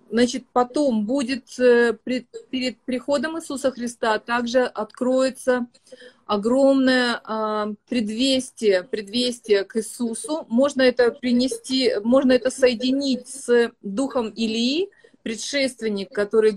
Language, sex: Russian, female